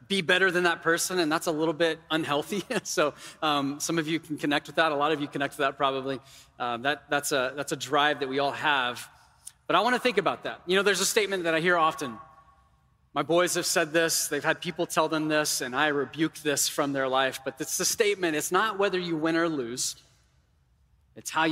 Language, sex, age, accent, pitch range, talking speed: English, male, 30-49, American, 150-180 Hz, 235 wpm